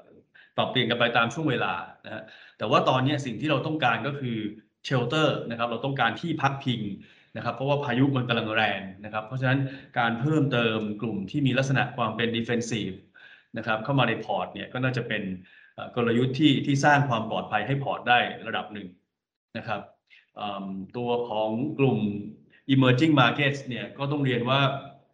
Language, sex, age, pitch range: Thai, male, 20-39, 110-135 Hz